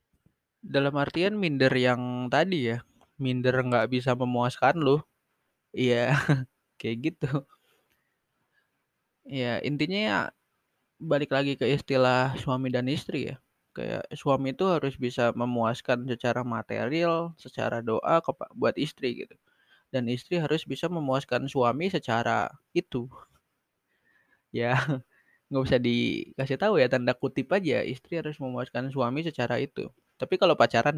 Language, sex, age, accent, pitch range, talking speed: Indonesian, male, 20-39, native, 120-145 Hz, 125 wpm